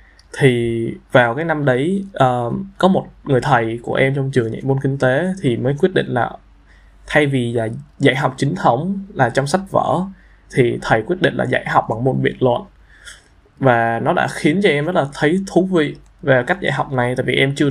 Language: Vietnamese